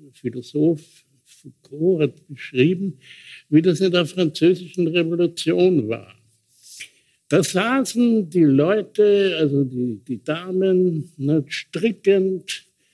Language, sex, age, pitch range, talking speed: German, male, 70-89, 150-195 Hz, 95 wpm